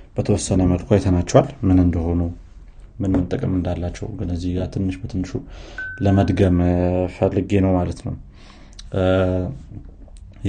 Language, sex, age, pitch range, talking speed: Amharic, male, 30-49, 90-100 Hz, 110 wpm